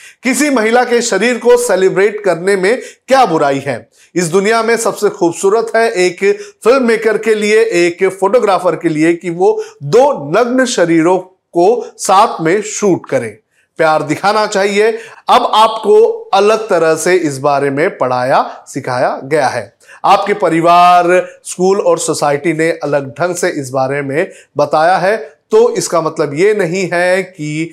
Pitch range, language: 160-225 Hz, Hindi